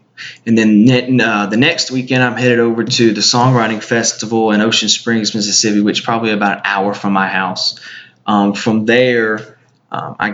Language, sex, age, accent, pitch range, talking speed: English, male, 20-39, American, 100-120 Hz, 180 wpm